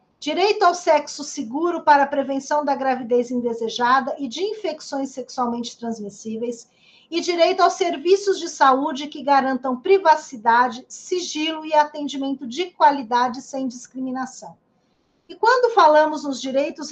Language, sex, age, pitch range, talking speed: Portuguese, female, 40-59, 250-320 Hz, 130 wpm